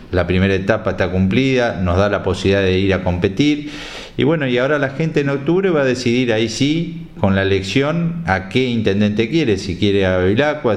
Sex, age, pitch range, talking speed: male, 50-69, 95-120 Hz, 205 wpm